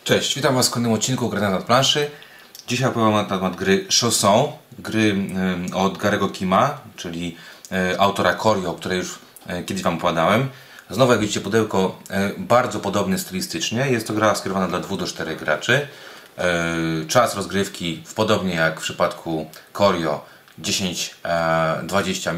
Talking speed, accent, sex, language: 130 wpm, native, male, Polish